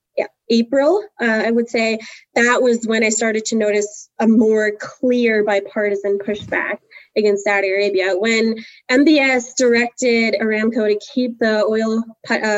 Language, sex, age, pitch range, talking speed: English, female, 20-39, 210-255 Hz, 145 wpm